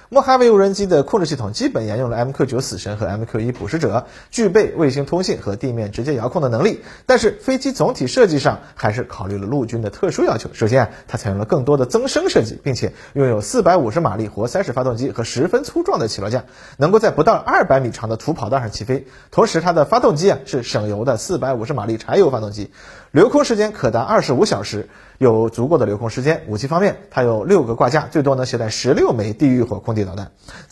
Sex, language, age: male, Chinese, 30-49